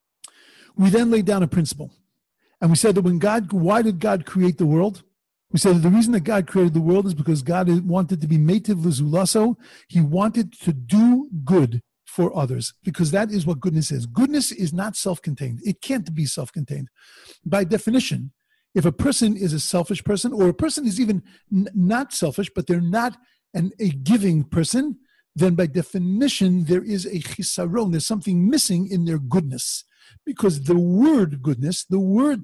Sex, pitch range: male, 160-210 Hz